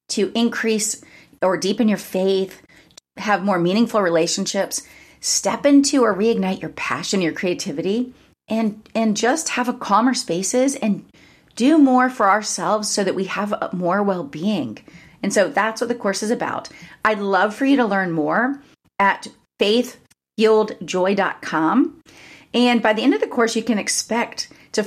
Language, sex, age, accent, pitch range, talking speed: English, female, 30-49, American, 180-230 Hz, 155 wpm